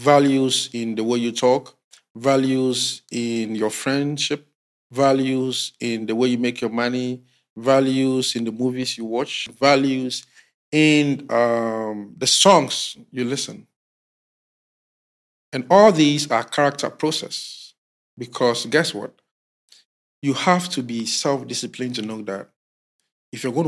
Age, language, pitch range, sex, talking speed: 50-69, English, 115-140 Hz, male, 130 wpm